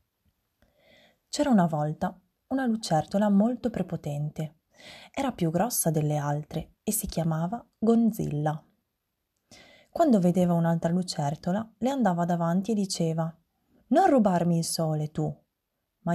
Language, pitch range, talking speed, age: Italian, 165-215 Hz, 115 wpm, 20-39